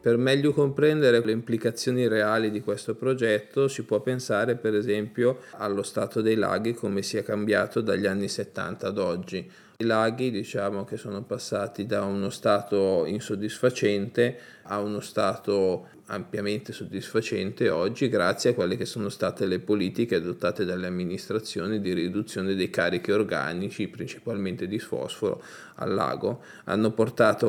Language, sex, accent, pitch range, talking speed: Italian, male, native, 105-120 Hz, 145 wpm